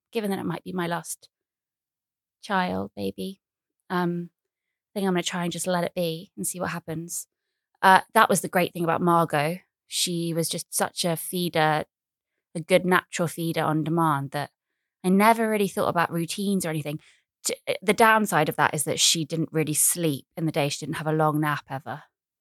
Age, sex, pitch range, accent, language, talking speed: 20-39, female, 155-185 Hz, British, English, 200 wpm